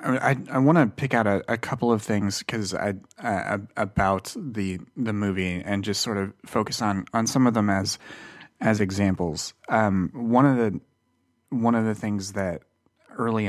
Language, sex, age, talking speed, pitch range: English, male, 30-49, 185 wpm, 90-110 Hz